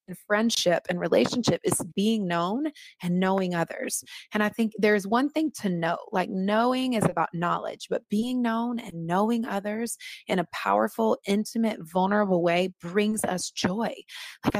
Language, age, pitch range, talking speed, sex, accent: English, 20-39, 180-225 Hz, 160 wpm, female, American